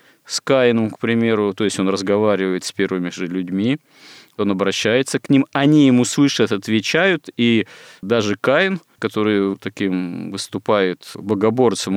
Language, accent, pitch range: Russian, native, 95-115 Hz